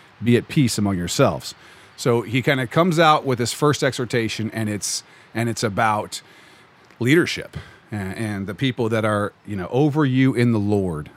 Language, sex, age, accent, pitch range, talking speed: English, male, 40-59, American, 100-130 Hz, 185 wpm